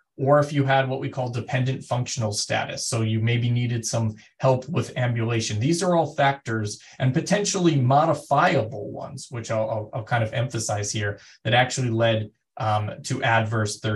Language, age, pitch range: English, 20-39, 115-145 Hz